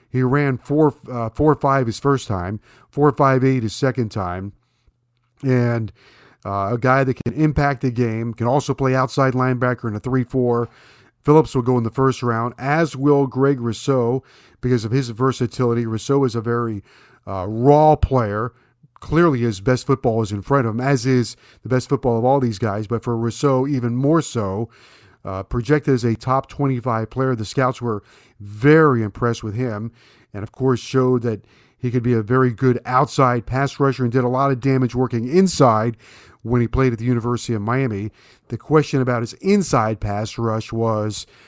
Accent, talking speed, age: American, 190 wpm, 50-69